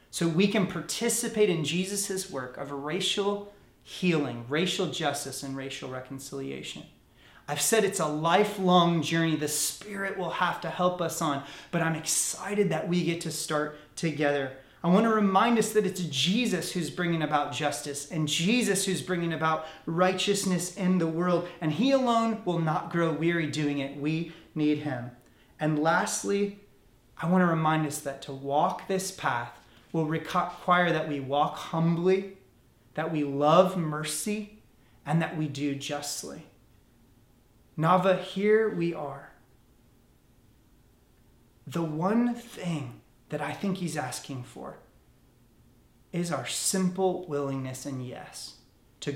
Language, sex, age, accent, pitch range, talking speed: English, male, 30-49, American, 135-180 Hz, 145 wpm